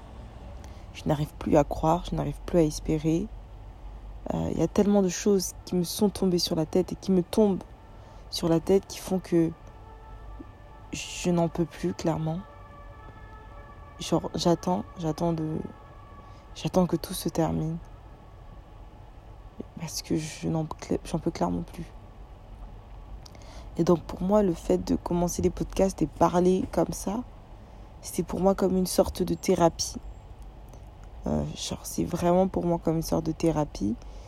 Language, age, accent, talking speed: French, 20-39, French, 160 wpm